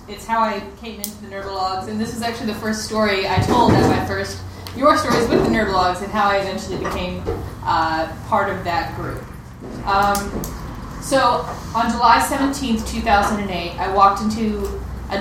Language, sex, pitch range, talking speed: English, female, 200-270 Hz, 175 wpm